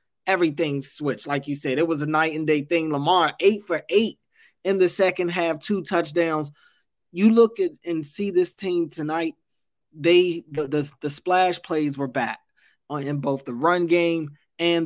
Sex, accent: male, American